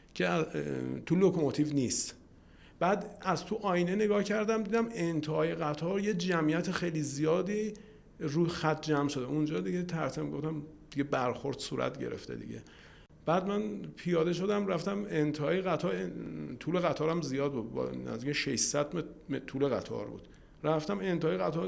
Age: 50-69